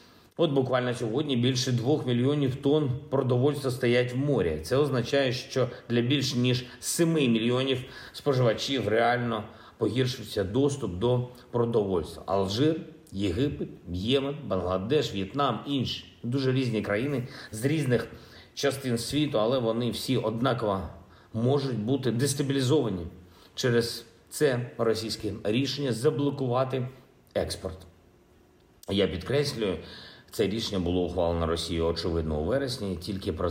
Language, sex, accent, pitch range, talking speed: Ukrainian, male, native, 105-135 Hz, 115 wpm